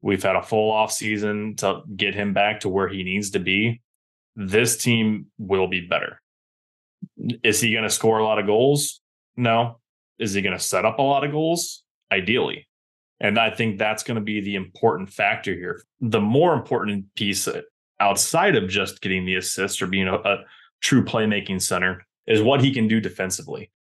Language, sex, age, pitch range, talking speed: English, male, 20-39, 95-115 Hz, 190 wpm